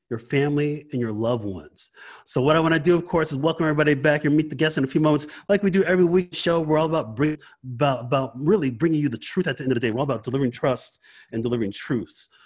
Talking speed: 270 wpm